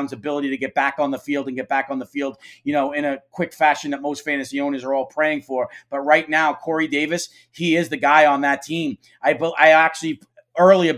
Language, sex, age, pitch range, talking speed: English, male, 40-59, 150-170 Hz, 240 wpm